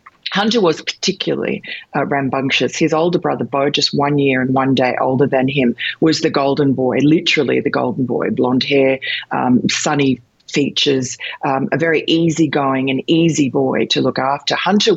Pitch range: 130-150 Hz